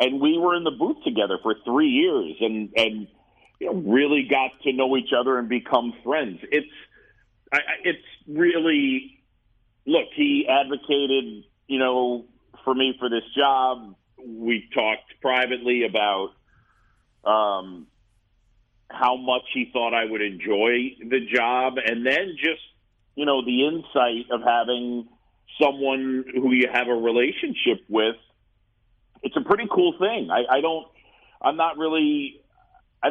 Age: 40-59